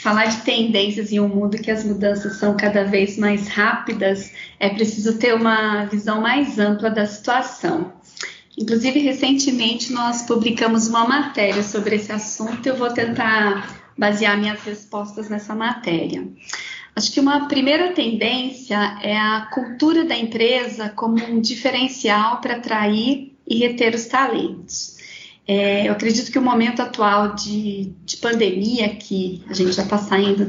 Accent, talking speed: Brazilian, 150 wpm